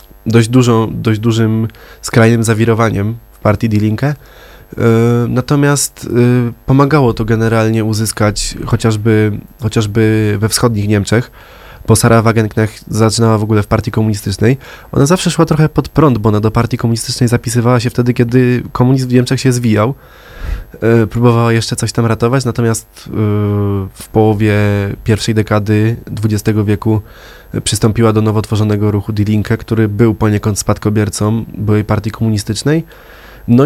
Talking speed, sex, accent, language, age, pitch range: 135 wpm, male, native, Polish, 20-39, 105-120 Hz